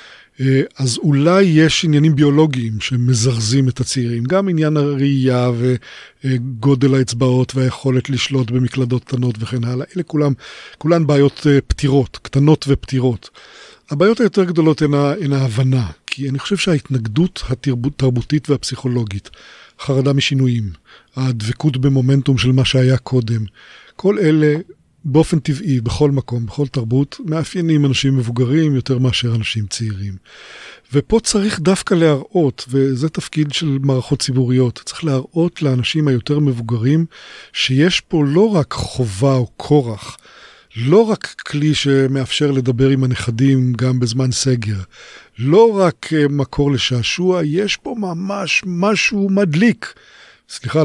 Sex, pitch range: male, 125-155 Hz